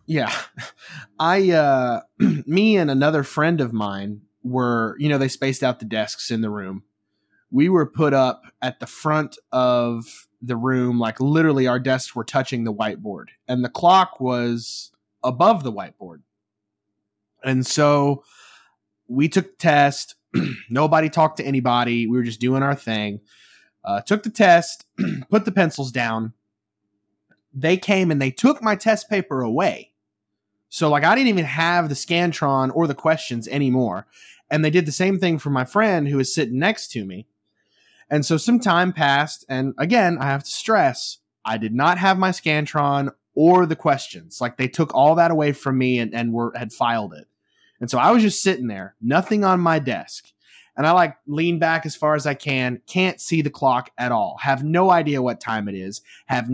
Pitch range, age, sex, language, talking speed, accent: 120-165 Hz, 20-39, male, English, 185 wpm, American